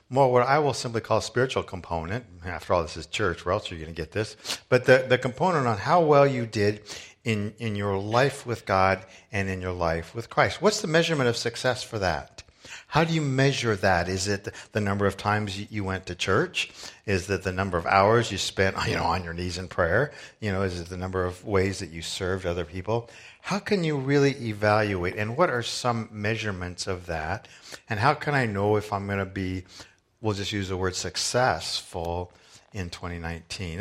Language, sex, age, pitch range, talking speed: English, male, 50-69, 90-120 Hz, 220 wpm